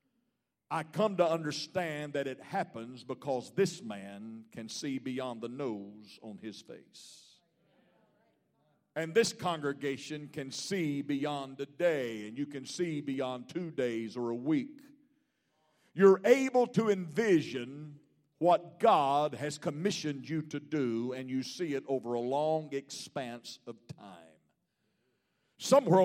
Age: 50-69